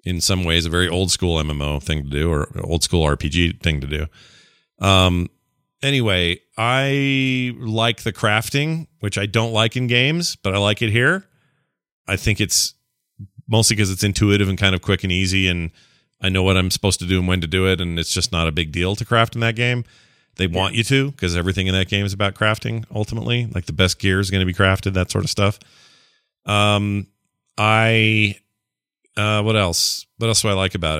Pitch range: 95-120 Hz